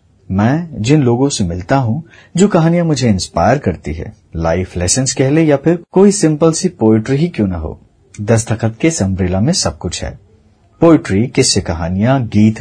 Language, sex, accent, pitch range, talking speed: Hindi, male, native, 105-160 Hz, 170 wpm